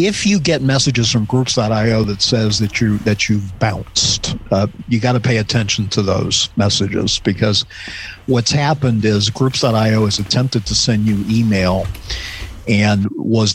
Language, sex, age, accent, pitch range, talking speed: English, male, 50-69, American, 105-125 Hz, 155 wpm